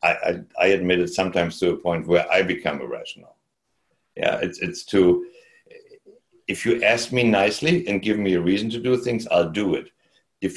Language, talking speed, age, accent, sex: English, 185 wpm, 60-79, German, male